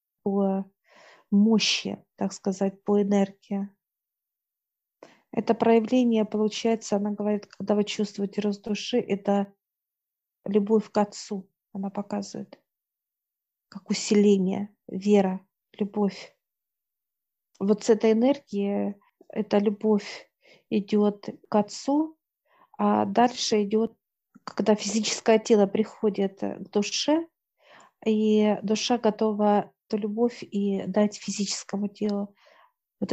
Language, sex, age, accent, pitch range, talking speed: Russian, female, 40-59, native, 200-220 Hz, 100 wpm